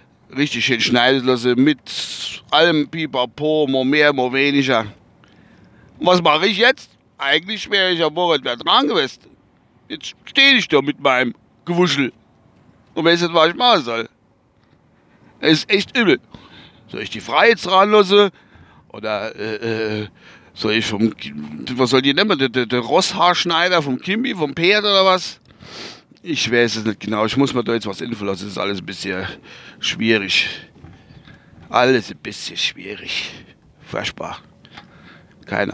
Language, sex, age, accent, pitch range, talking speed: German, male, 60-79, German, 115-165 Hz, 145 wpm